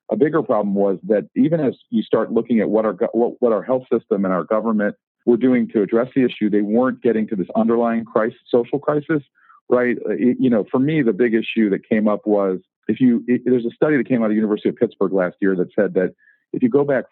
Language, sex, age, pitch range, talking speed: English, male, 40-59, 100-130 Hz, 250 wpm